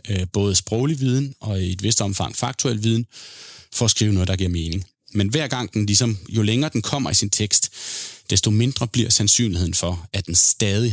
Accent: native